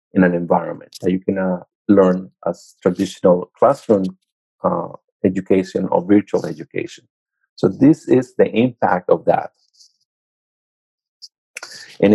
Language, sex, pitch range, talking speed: English, male, 95-125 Hz, 120 wpm